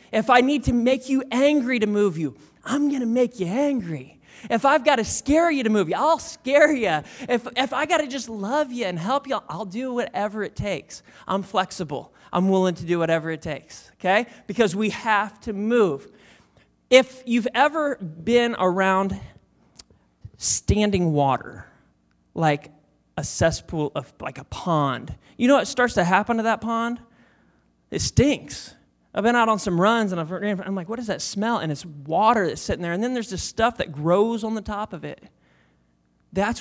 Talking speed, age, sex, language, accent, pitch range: 195 wpm, 20-39, male, English, American, 175-245 Hz